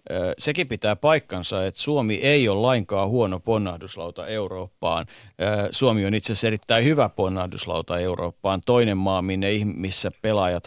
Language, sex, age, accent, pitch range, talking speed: Finnish, male, 50-69, native, 95-120 Hz, 130 wpm